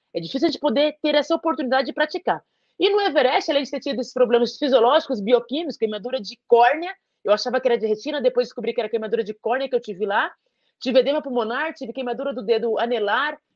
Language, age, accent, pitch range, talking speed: Portuguese, 30-49, Brazilian, 235-305 Hz, 215 wpm